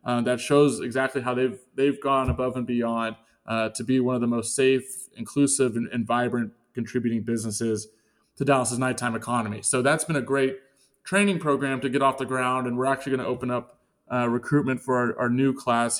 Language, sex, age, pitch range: English, male, 20-39, 115-130 Hz